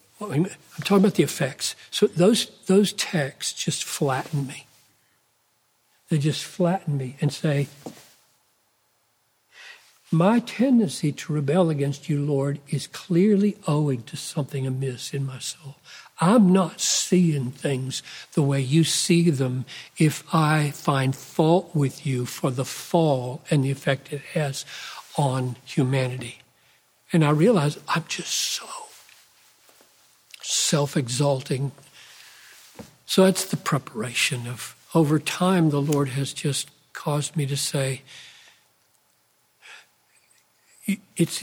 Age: 60-79